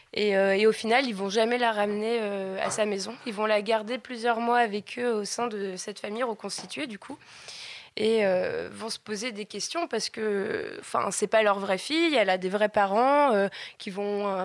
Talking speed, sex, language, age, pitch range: 230 wpm, female, French, 20-39, 210-250 Hz